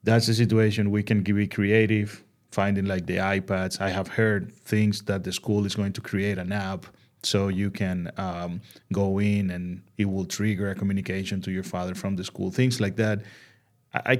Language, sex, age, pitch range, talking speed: English, male, 30-49, 95-115 Hz, 195 wpm